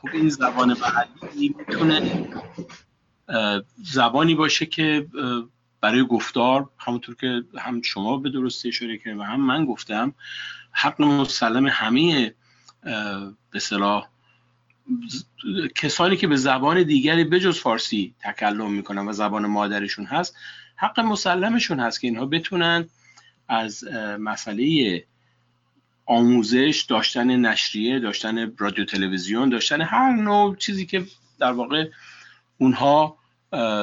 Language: Persian